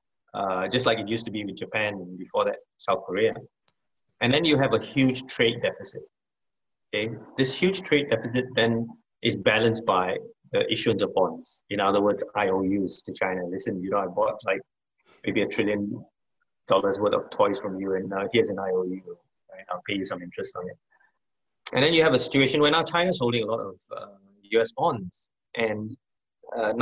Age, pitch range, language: 20-39, 105-180 Hz, English